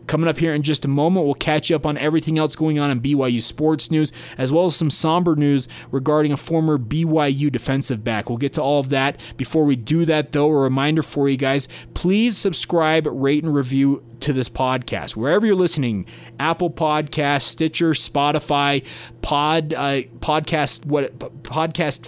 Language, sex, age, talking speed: English, male, 30-49, 185 wpm